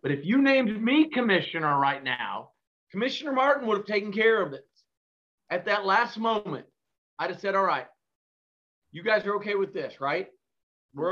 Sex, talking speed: male, 180 wpm